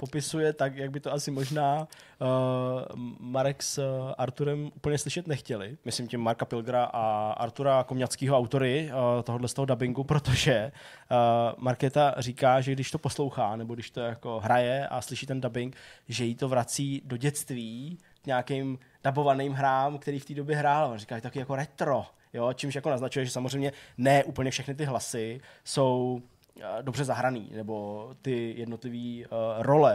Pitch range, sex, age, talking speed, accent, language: 120-140 Hz, male, 20-39, 165 wpm, native, Czech